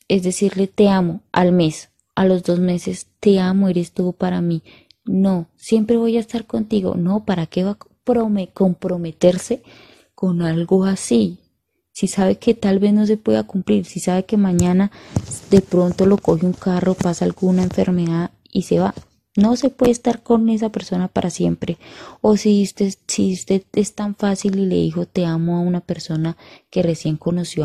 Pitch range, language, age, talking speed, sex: 170-200 Hz, Spanish, 20-39, 180 wpm, female